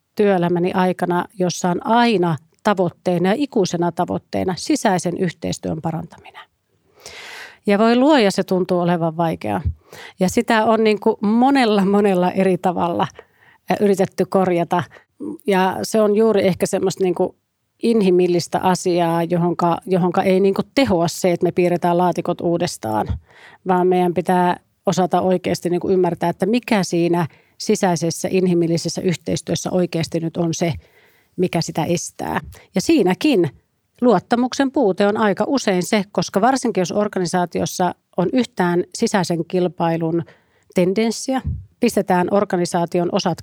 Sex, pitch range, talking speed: female, 175-205 Hz, 130 wpm